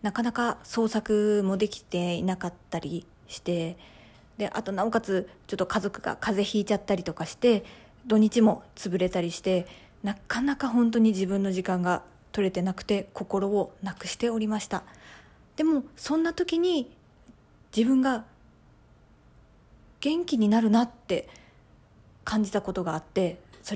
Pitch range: 190-250 Hz